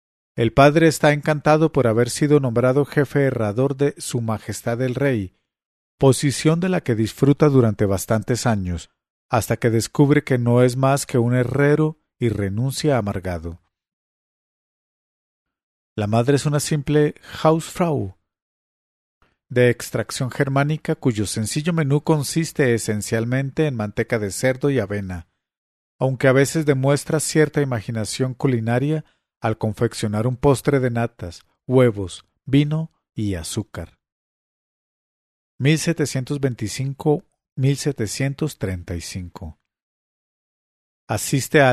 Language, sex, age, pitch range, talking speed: English, male, 50-69, 110-145 Hz, 110 wpm